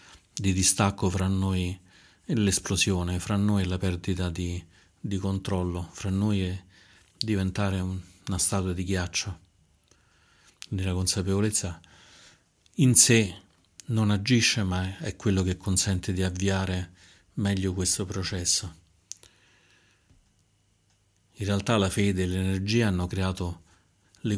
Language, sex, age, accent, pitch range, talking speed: Italian, male, 40-59, native, 95-105 Hz, 120 wpm